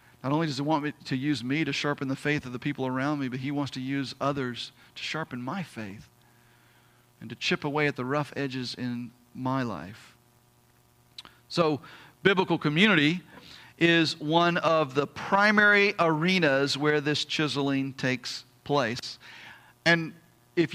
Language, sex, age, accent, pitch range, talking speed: English, male, 40-59, American, 140-210 Hz, 160 wpm